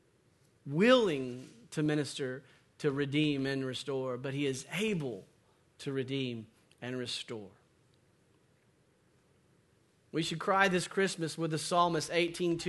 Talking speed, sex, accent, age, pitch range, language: 110 wpm, male, American, 40-59, 155-210 Hz, English